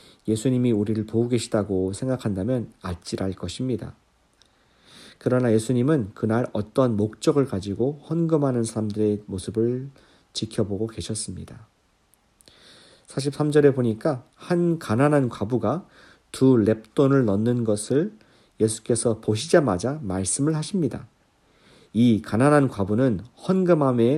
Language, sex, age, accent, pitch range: Korean, male, 40-59, native, 105-135 Hz